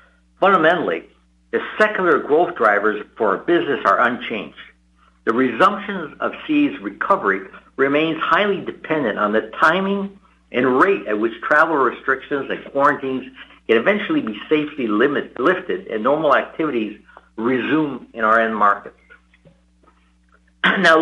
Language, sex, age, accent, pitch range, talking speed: English, male, 60-79, American, 110-180 Hz, 125 wpm